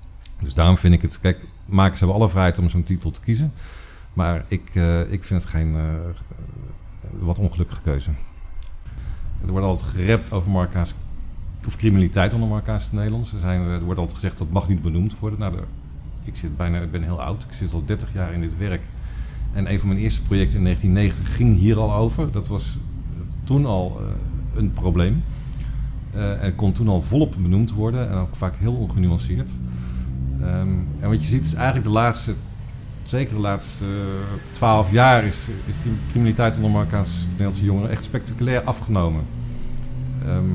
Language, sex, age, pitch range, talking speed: Dutch, male, 50-69, 85-110 Hz, 180 wpm